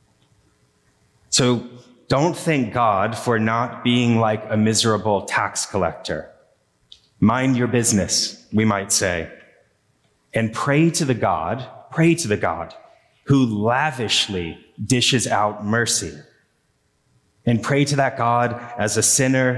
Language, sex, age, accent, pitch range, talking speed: English, male, 30-49, American, 105-125 Hz, 125 wpm